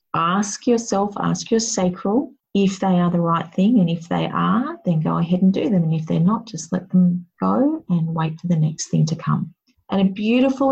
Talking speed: 225 wpm